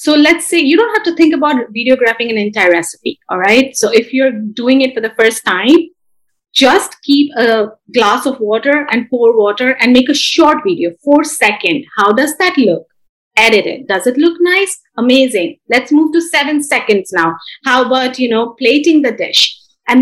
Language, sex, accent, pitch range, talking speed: English, female, Indian, 230-290 Hz, 195 wpm